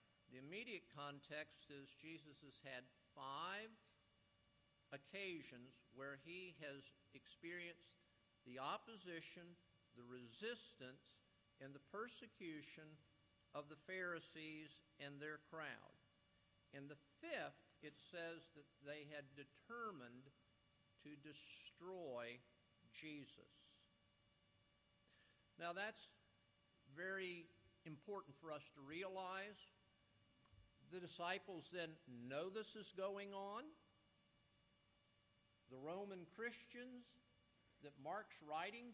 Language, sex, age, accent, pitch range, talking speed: English, male, 50-69, American, 130-180 Hz, 90 wpm